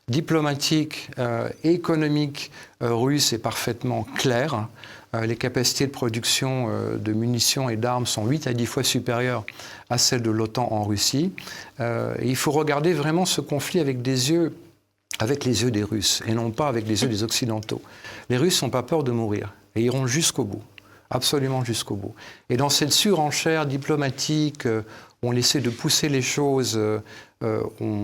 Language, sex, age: French, male, 50-69